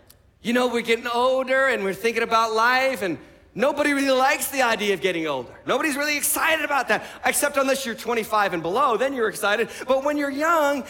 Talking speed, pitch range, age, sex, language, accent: 205 wpm, 230-270 Hz, 40-59, male, English, American